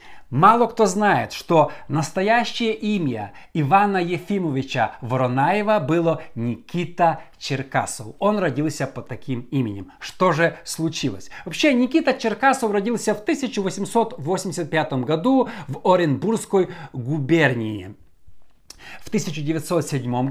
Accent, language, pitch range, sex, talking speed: native, Russian, 140-215 Hz, male, 95 wpm